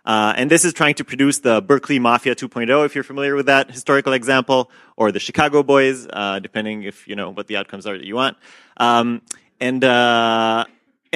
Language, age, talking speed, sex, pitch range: English, 30-49, 200 wpm, male, 115-145 Hz